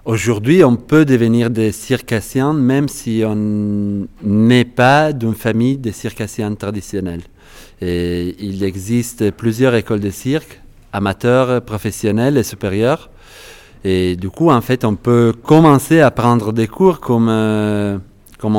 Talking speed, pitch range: 130 wpm, 100-125 Hz